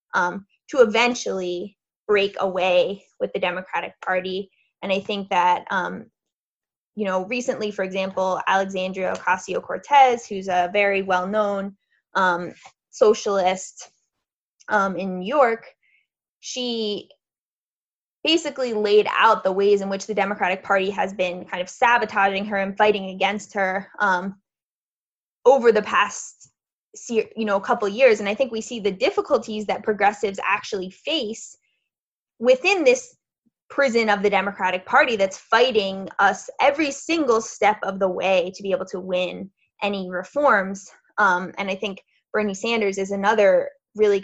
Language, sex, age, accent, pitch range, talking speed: English, female, 20-39, American, 190-225 Hz, 140 wpm